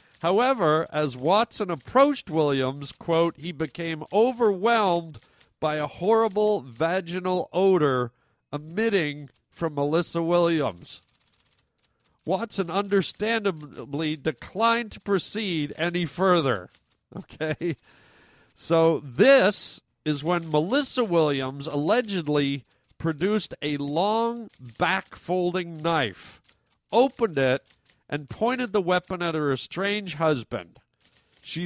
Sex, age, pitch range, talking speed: male, 40-59, 145-195 Hz, 95 wpm